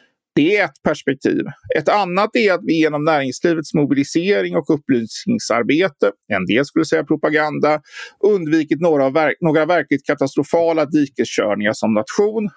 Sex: male